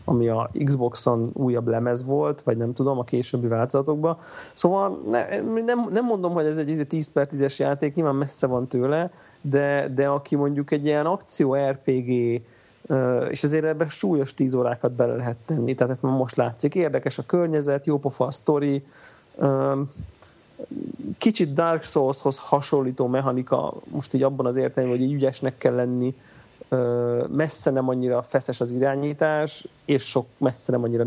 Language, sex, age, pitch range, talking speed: Hungarian, male, 30-49, 125-150 Hz, 155 wpm